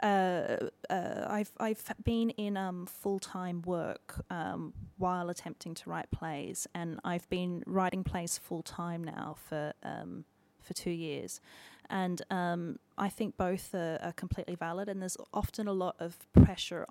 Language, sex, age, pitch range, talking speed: English, female, 30-49, 165-190 Hz, 160 wpm